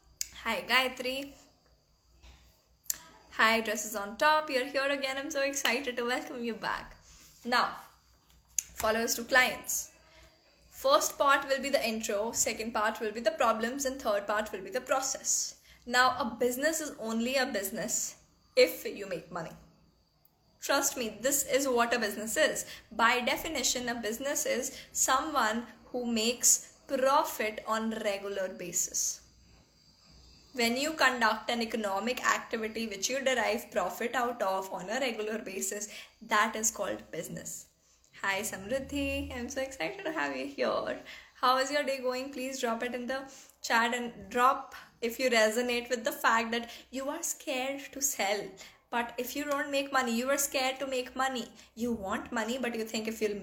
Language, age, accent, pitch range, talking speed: English, 10-29, Indian, 220-270 Hz, 165 wpm